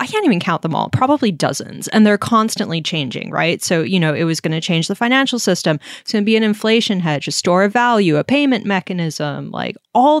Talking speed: 235 wpm